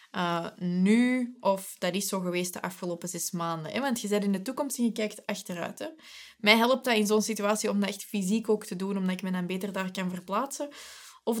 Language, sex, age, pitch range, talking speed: Dutch, female, 20-39, 185-230 Hz, 235 wpm